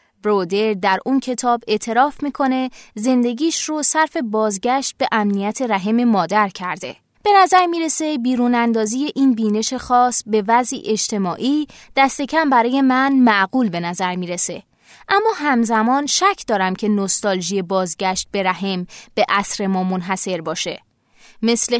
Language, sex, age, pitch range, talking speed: Persian, female, 20-39, 205-280 Hz, 135 wpm